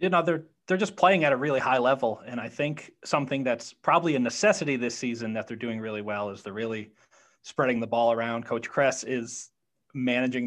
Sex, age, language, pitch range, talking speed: male, 30-49, English, 115-135 Hz, 210 wpm